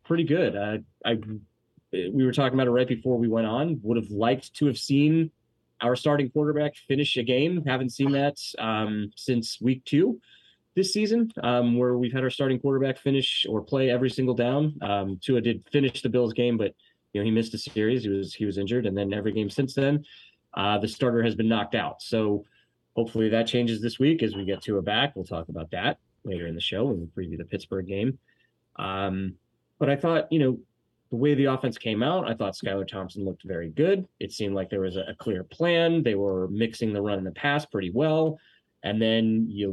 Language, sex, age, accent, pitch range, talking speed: English, male, 20-39, American, 105-135 Hz, 220 wpm